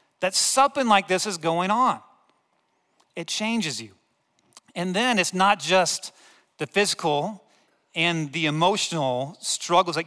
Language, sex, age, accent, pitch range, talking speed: English, male, 40-59, American, 175-225 Hz, 130 wpm